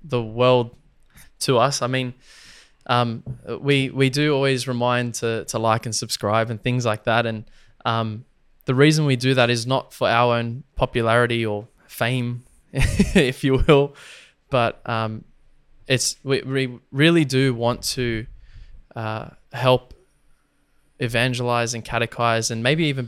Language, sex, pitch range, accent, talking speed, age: English, male, 115-130 Hz, Australian, 145 wpm, 20-39